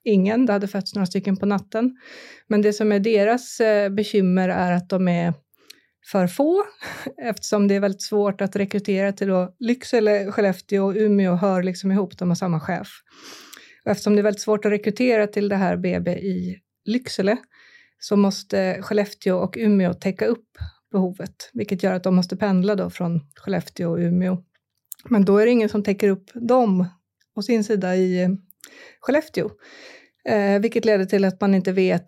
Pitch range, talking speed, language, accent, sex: 185-215 Hz, 180 wpm, Swedish, native, female